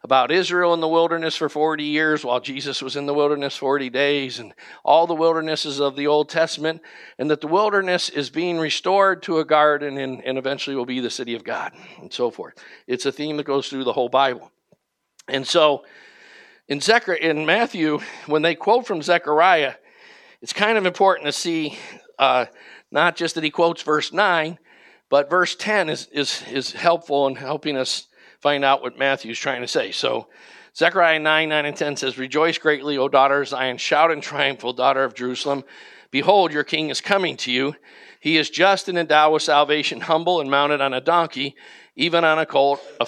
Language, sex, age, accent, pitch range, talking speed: English, male, 50-69, American, 135-165 Hz, 195 wpm